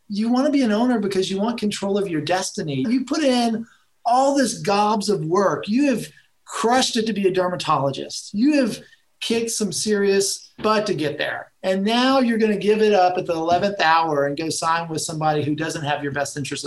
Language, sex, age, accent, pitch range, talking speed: English, male, 40-59, American, 155-210 Hz, 220 wpm